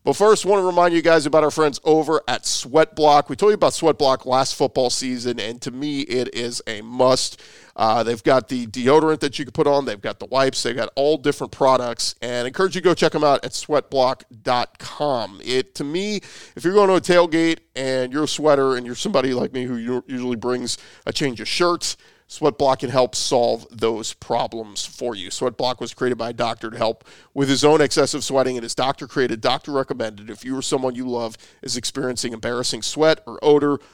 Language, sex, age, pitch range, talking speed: English, male, 40-59, 120-150 Hz, 220 wpm